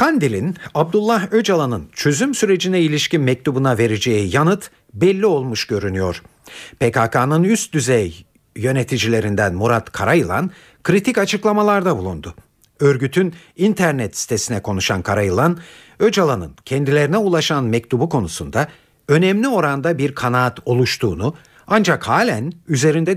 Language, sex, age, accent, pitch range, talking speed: Turkish, male, 50-69, native, 115-170 Hz, 100 wpm